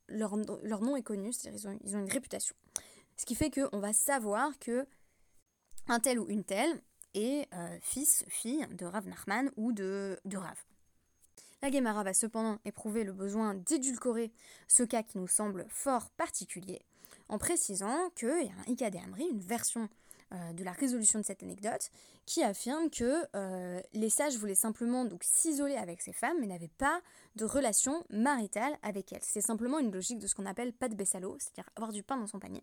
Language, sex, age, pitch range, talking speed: French, female, 20-39, 200-265 Hz, 195 wpm